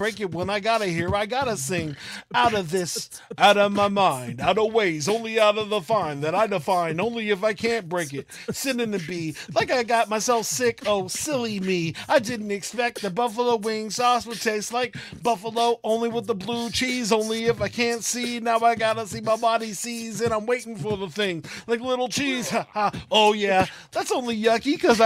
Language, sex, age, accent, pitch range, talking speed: English, male, 40-59, American, 200-240 Hz, 210 wpm